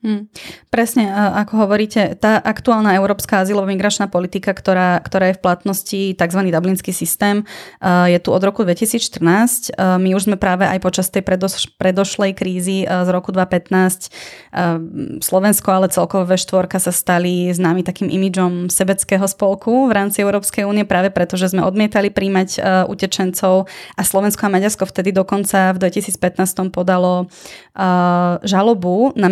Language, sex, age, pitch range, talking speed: Slovak, female, 20-39, 185-205 Hz, 140 wpm